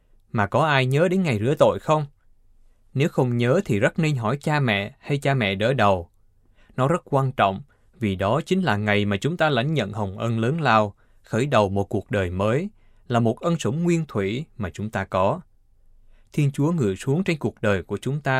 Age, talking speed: 20-39, 220 wpm